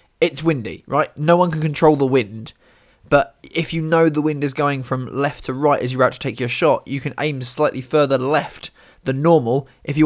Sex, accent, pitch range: male, British, 130-155 Hz